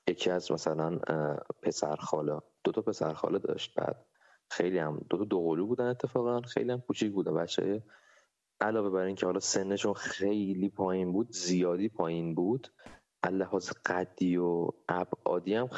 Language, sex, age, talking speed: Persian, male, 30-49, 135 wpm